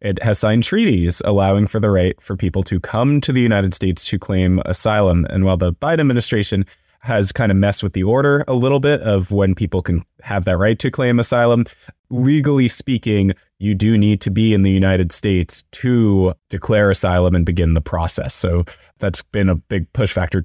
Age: 20-39